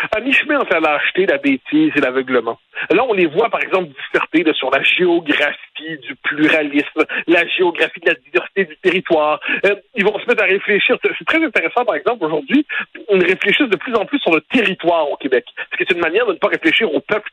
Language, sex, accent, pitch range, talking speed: French, male, French, 180-270 Hz, 215 wpm